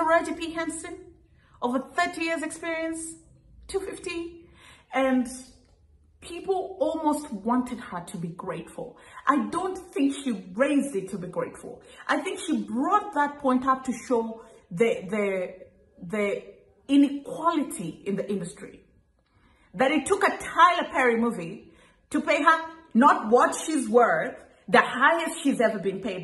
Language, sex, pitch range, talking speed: English, female, 225-315 Hz, 140 wpm